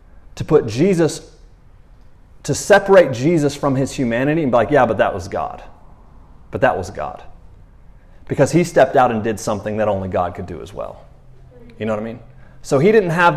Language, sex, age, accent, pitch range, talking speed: English, male, 30-49, American, 105-140 Hz, 200 wpm